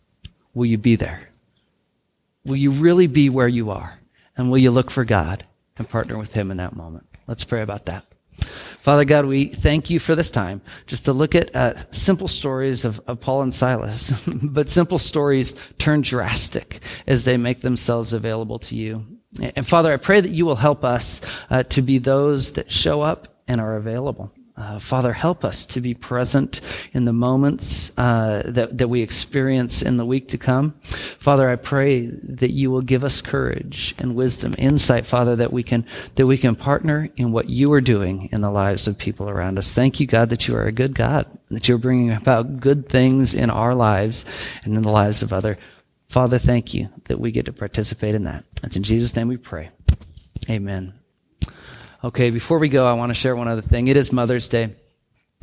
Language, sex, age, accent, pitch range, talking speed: English, male, 40-59, American, 110-140 Hz, 200 wpm